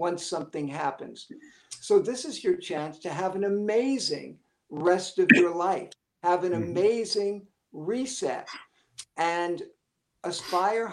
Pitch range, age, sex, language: 165-215 Hz, 60-79, male, English